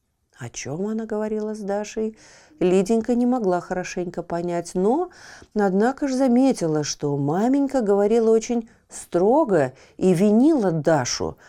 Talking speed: 120 wpm